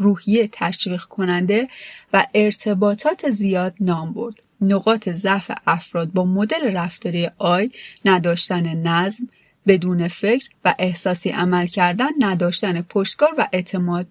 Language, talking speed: Persian, 115 wpm